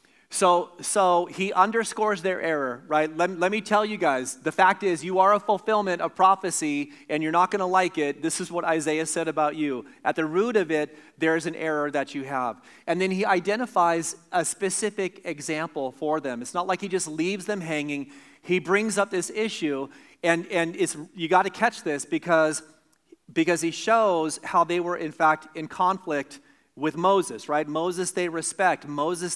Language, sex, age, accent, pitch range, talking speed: English, male, 40-59, American, 155-190 Hz, 195 wpm